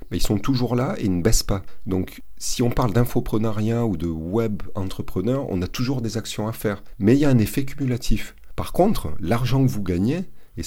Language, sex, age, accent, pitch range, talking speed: French, male, 40-59, French, 95-125 Hz, 220 wpm